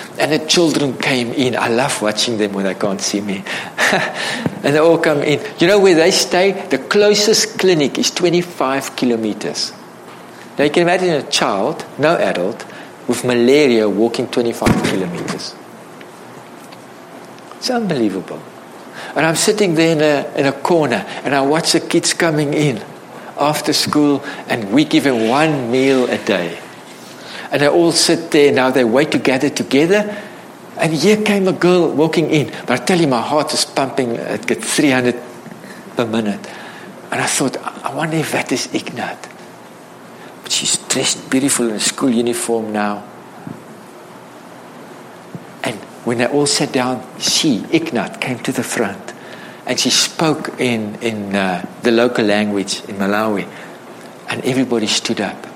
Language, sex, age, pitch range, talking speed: English, male, 60-79, 115-165 Hz, 155 wpm